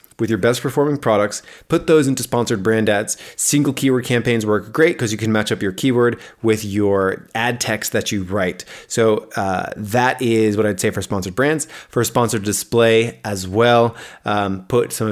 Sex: male